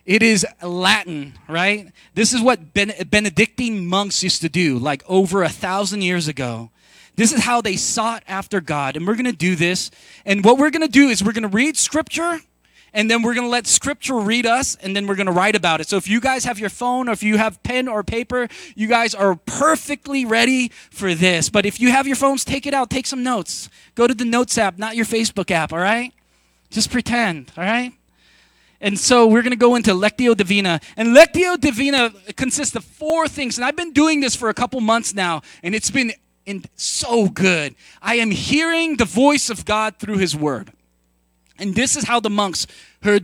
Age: 20-39